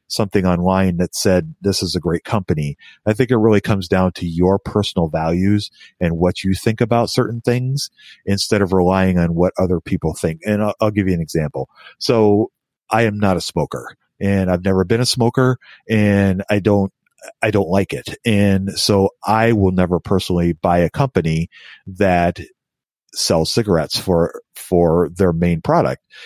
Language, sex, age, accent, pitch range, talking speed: English, male, 40-59, American, 85-105 Hz, 175 wpm